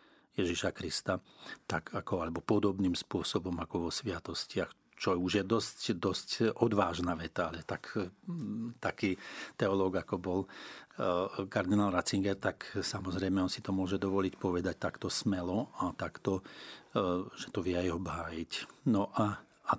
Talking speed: 145 wpm